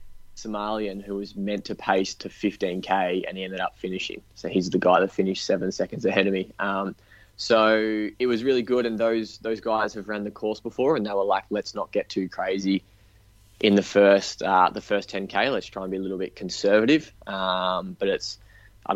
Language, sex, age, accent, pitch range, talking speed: English, male, 20-39, Australian, 100-110 Hz, 210 wpm